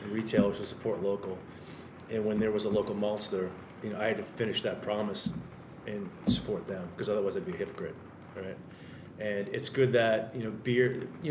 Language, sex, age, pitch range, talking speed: English, male, 30-49, 100-115 Hz, 200 wpm